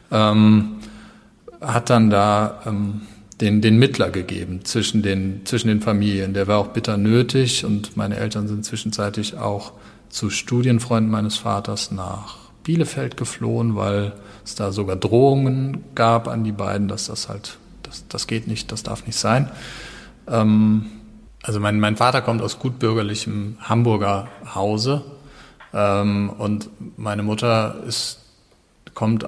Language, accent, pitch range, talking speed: German, German, 100-115 Hz, 140 wpm